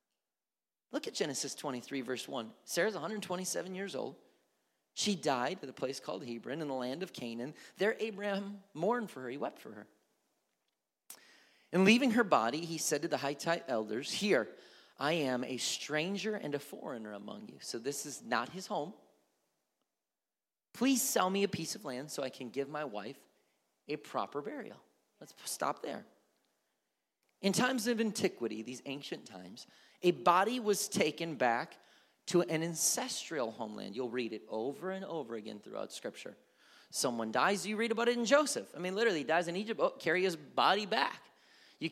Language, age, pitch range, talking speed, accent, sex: English, 30-49, 140-205 Hz, 175 wpm, American, male